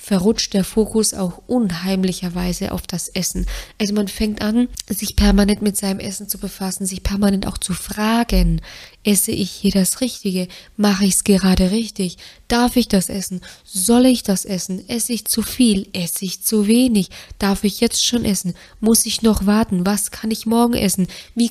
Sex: female